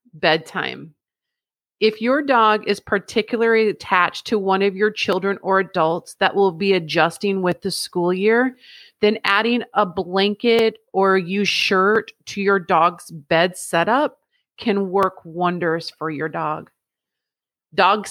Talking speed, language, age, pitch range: 135 wpm, English, 40-59, 185-235 Hz